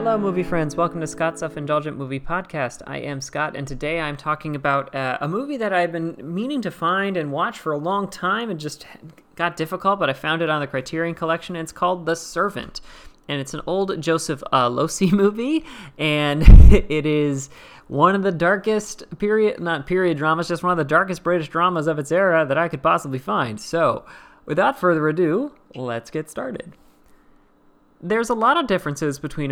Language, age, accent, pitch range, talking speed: English, 30-49, American, 140-180 Hz, 195 wpm